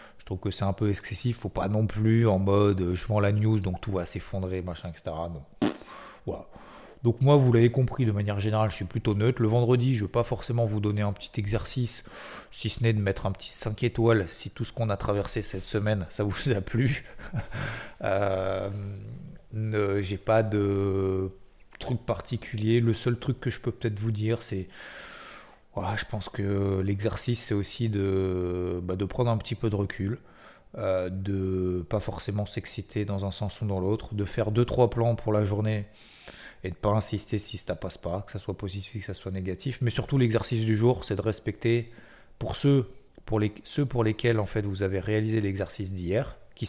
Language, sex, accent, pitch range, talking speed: French, male, French, 100-115 Hz, 210 wpm